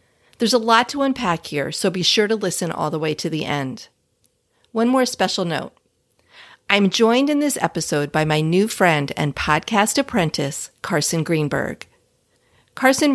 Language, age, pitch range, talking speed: English, 40-59, 155-220 Hz, 165 wpm